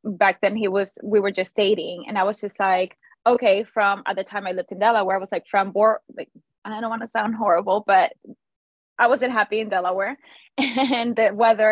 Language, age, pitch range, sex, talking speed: English, 20-39, 190-225 Hz, female, 220 wpm